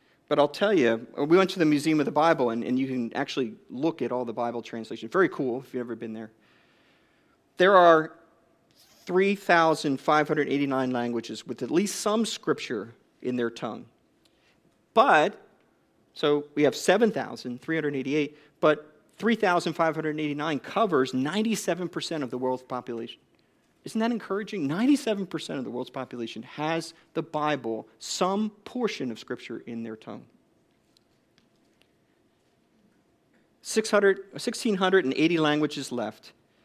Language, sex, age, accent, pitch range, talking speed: English, male, 40-59, American, 130-190 Hz, 125 wpm